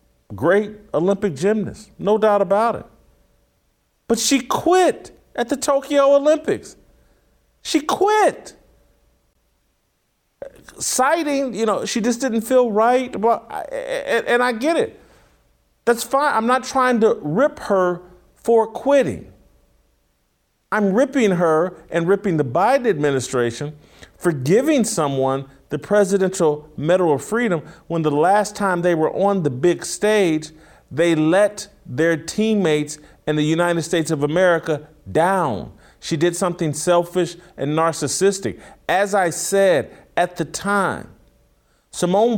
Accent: American